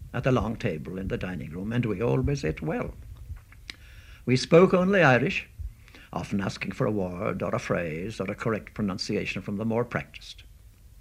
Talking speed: 180 wpm